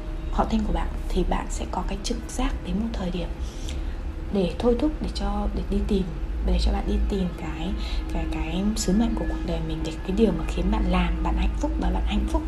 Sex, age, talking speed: female, 20-39, 250 wpm